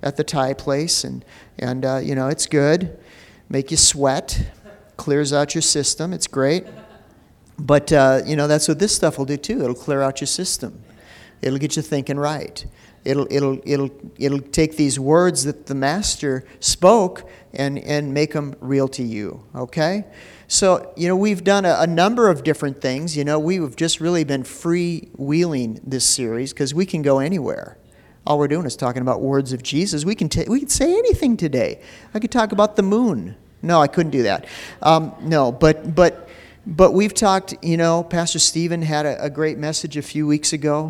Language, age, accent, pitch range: English, 50-69, American, 135-170 Hz